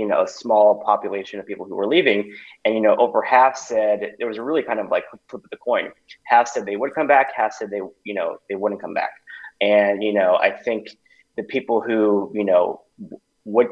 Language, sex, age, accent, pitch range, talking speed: English, male, 20-39, American, 100-110 Hz, 230 wpm